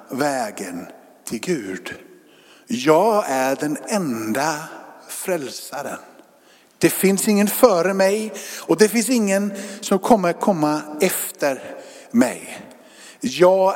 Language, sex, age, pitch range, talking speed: Swedish, male, 50-69, 155-225 Hz, 100 wpm